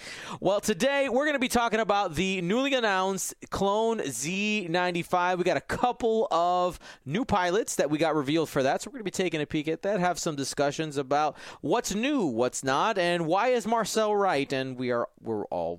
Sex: male